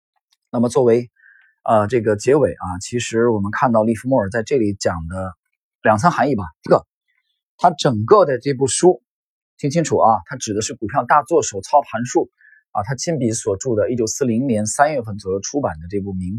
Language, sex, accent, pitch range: Chinese, male, native, 110-170 Hz